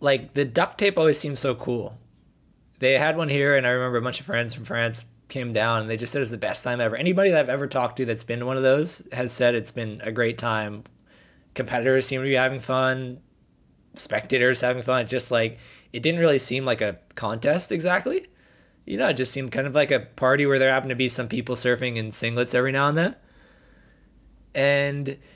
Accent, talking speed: American, 225 wpm